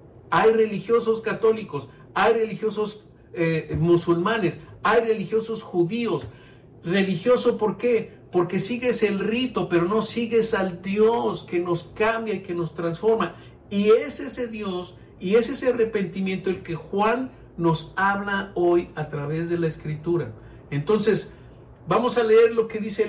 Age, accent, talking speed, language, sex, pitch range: 50-69, Mexican, 145 wpm, Spanish, male, 165-215 Hz